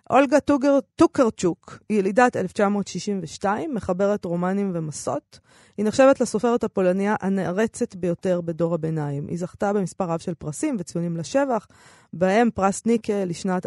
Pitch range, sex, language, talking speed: 175-225 Hz, female, Hebrew, 125 wpm